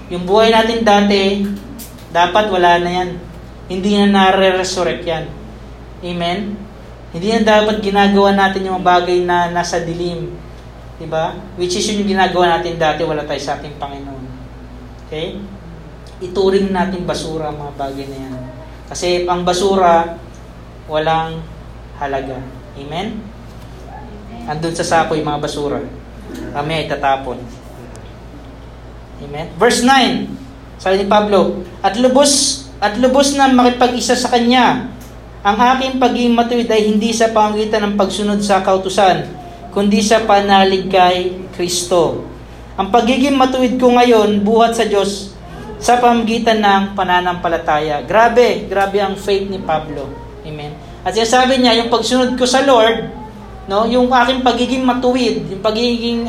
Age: 20-39